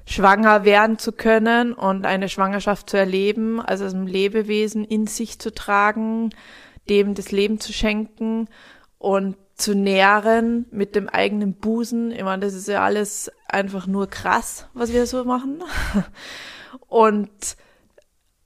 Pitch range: 195-220 Hz